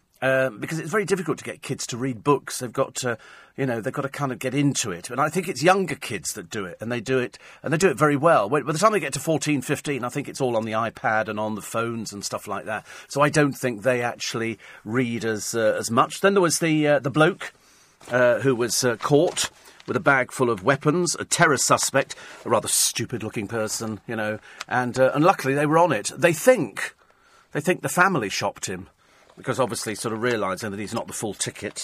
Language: English